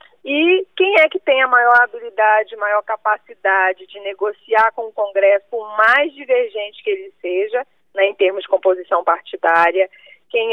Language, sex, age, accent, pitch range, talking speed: Portuguese, female, 20-39, Brazilian, 195-275 Hz, 160 wpm